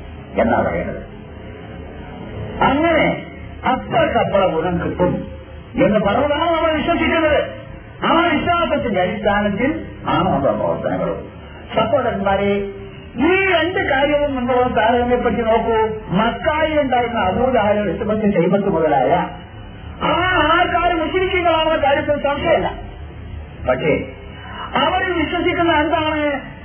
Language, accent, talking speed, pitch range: Malayalam, native, 90 wpm, 185-310 Hz